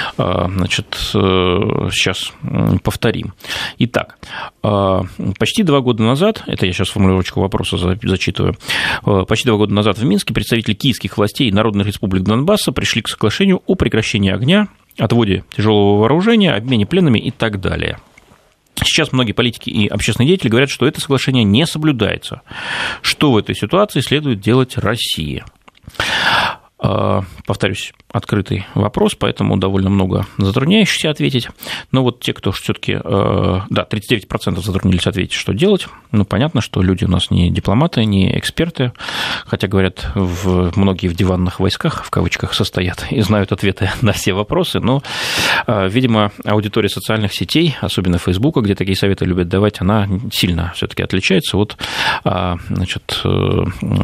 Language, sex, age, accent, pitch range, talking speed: Russian, male, 30-49, native, 95-120 Hz, 135 wpm